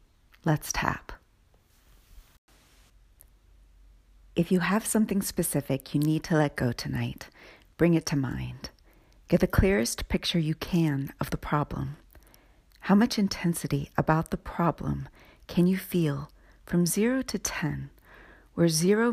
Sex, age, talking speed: female, 40-59, 130 wpm